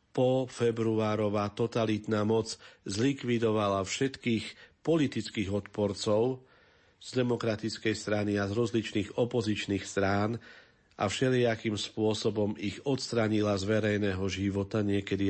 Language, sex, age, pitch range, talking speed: Slovak, male, 50-69, 100-120 Hz, 100 wpm